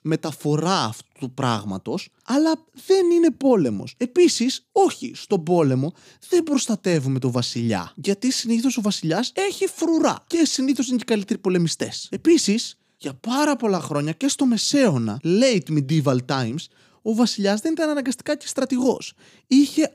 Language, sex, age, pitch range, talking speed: Greek, male, 20-39, 160-255 Hz, 145 wpm